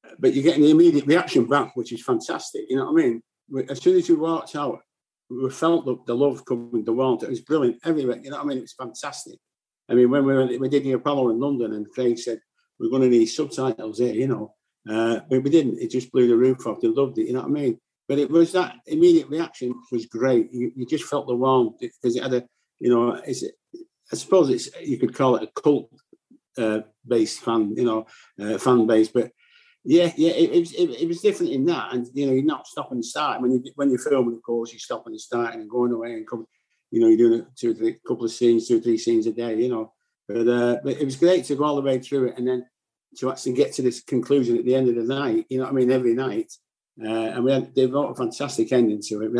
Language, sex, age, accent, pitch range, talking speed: English, male, 50-69, British, 120-180 Hz, 265 wpm